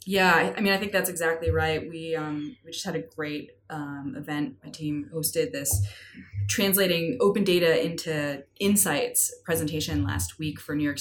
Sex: female